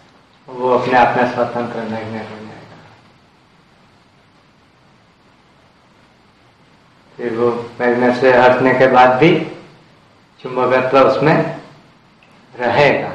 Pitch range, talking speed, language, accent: 120-145 Hz, 80 wpm, Hindi, native